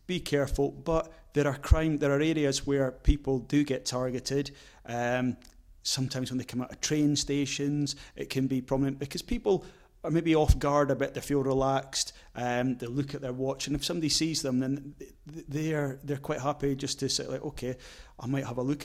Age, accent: 30-49, British